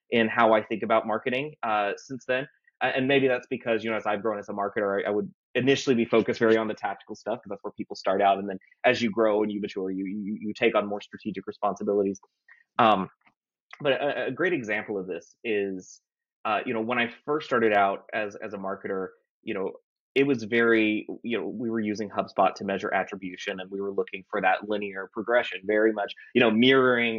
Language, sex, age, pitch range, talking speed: English, male, 20-39, 105-120 Hz, 225 wpm